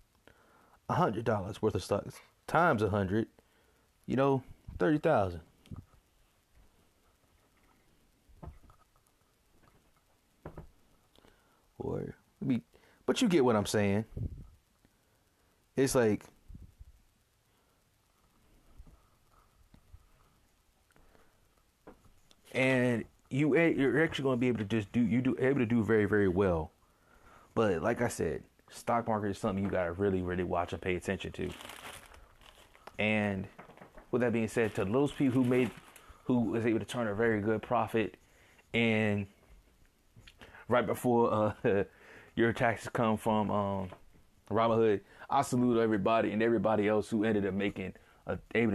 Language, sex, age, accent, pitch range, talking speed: English, male, 30-49, American, 100-120 Hz, 125 wpm